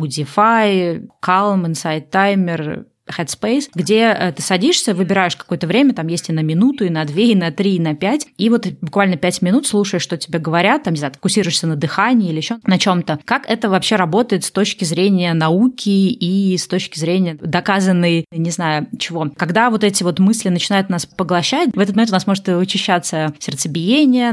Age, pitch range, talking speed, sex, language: 20-39, 170-205 Hz, 185 wpm, female, Russian